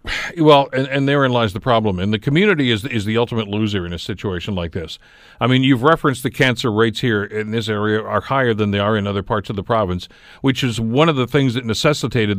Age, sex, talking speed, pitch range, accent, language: 50-69, male, 240 wpm, 110-155 Hz, American, English